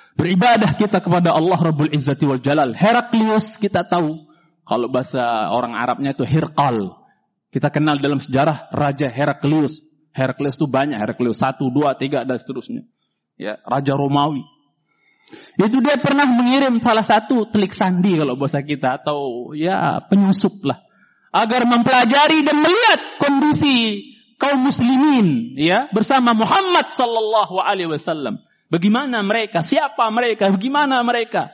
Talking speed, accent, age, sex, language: 130 wpm, native, 30-49, male, Indonesian